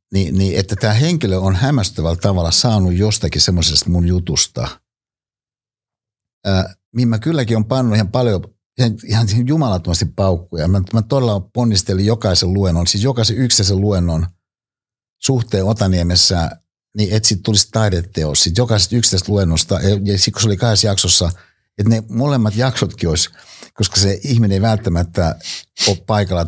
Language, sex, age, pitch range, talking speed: Finnish, male, 60-79, 90-115 Hz, 140 wpm